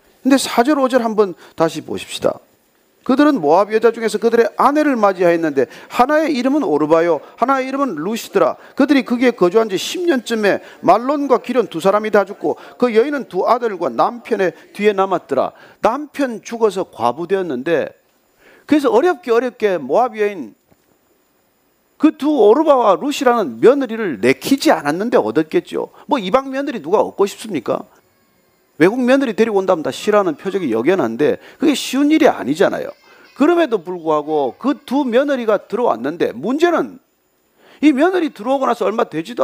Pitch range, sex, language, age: 205-290 Hz, male, Korean, 40-59